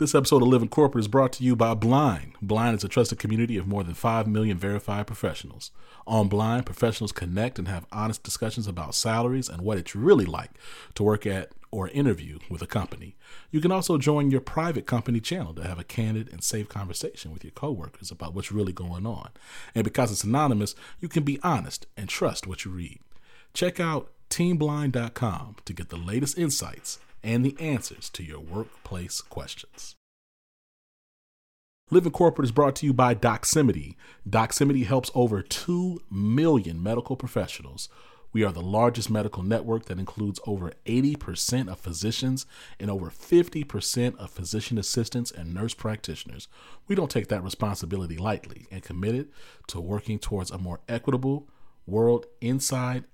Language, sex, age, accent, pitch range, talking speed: English, male, 40-59, American, 100-130 Hz, 170 wpm